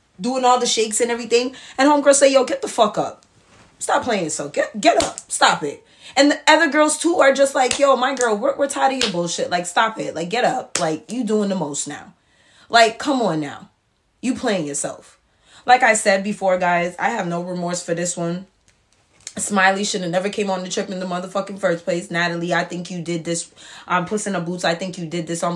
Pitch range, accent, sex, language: 185-255 Hz, American, female, English